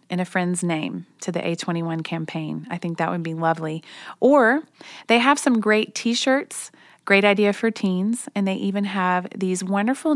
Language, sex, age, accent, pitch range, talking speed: English, female, 30-49, American, 165-205 Hz, 175 wpm